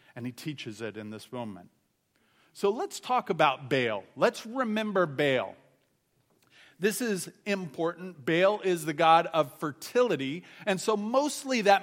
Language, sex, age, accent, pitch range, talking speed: English, male, 40-59, American, 130-180 Hz, 140 wpm